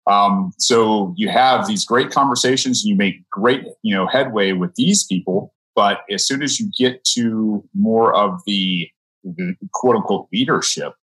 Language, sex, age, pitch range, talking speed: English, male, 30-49, 90-135 Hz, 165 wpm